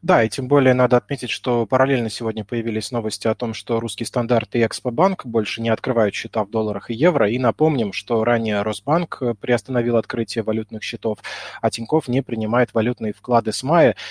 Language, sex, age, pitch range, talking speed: Russian, male, 20-39, 110-130 Hz, 185 wpm